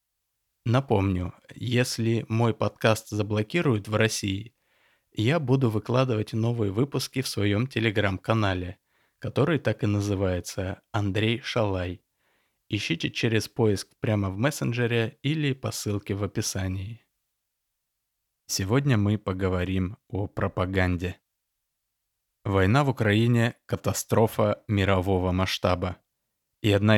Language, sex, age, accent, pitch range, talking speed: Russian, male, 20-39, native, 95-115 Hz, 100 wpm